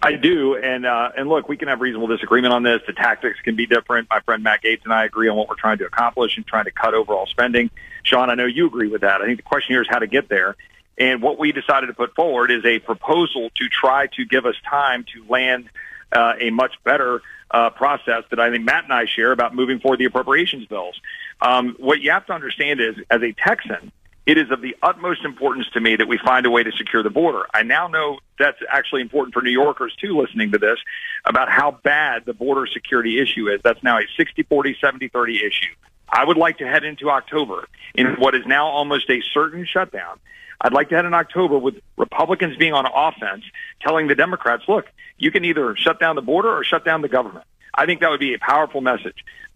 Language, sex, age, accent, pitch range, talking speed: English, male, 40-59, American, 115-160 Hz, 240 wpm